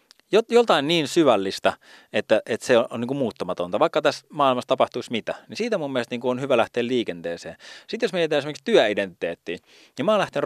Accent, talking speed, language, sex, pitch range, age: native, 170 wpm, Finnish, male, 110-165 Hz, 30-49